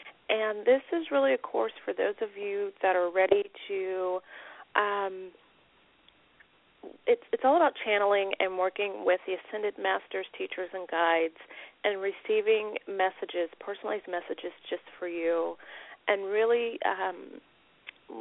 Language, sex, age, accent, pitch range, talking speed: English, female, 40-59, American, 185-225 Hz, 130 wpm